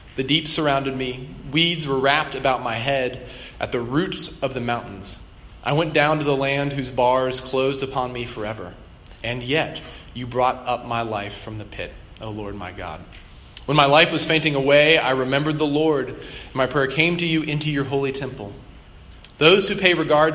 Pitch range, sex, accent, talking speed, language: 110-150 Hz, male, American, 195 wpm, English